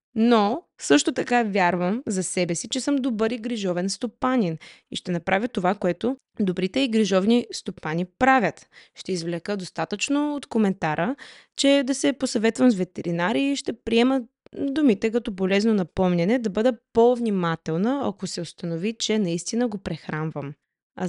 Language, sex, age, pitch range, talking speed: Bulgarian, female, 20-39, 180-240 Hz, 150 wpm